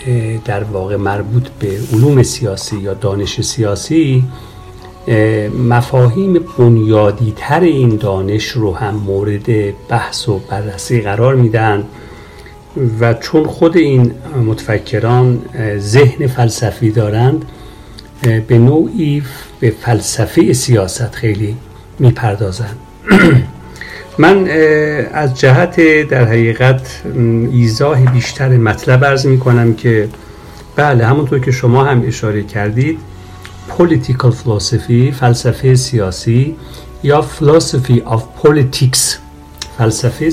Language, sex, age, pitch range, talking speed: Persian, male, 60-79, 105-130 Hz, 95 wpm